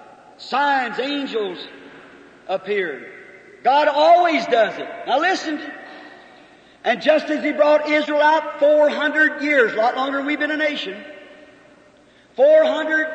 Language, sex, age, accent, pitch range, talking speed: English, male, 50-69, American, 280-340 Hz, 125 wpm